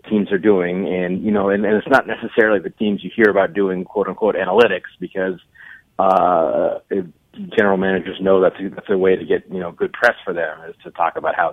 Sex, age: male, 40-59